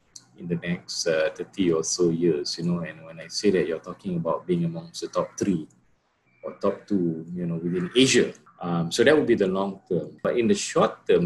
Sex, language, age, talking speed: male, English, 30-49, 230 wpm